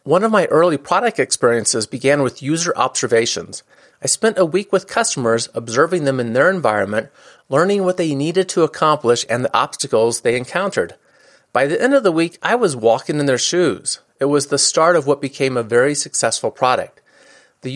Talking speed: 190 wpm